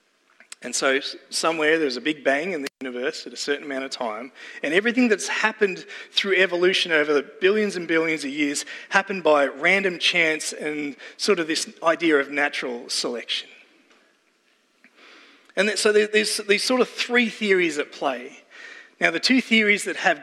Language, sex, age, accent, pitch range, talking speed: English, male, 30-49, Australian, 145-205 Hz, 170 wpm